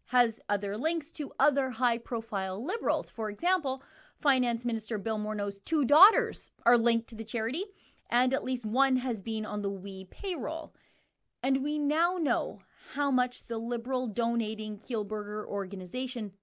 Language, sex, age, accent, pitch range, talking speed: English, female, 30-49, American, 200-265 Hz, 150 wpm